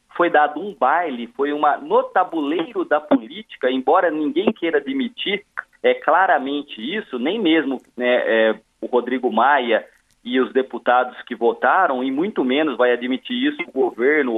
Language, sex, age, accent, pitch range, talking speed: Portuguese, male, 40-59, Brazilian, 150-245 Hz, 155 wpm